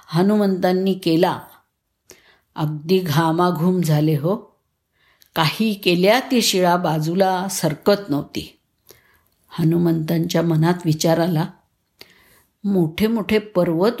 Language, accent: Marathi, native